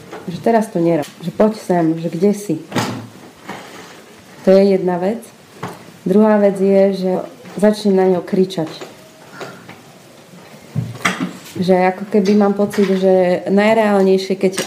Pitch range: 175-205 Hz